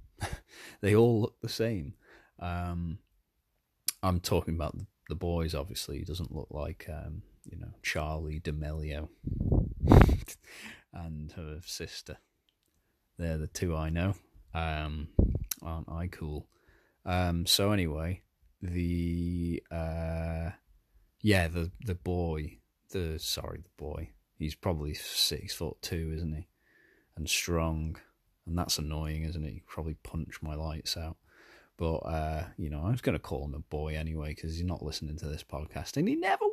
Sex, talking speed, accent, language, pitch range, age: male, 145 wpm, British, English, 80-100 Hz, 30-49